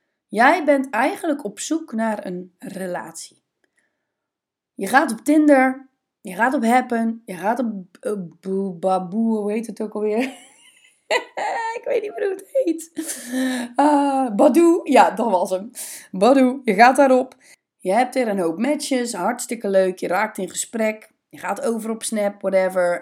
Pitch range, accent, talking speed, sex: 190-270 Hz, Dutch, 160 wpm, female